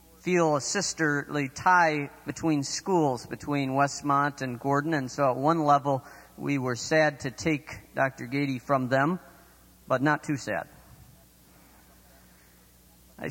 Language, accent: English, American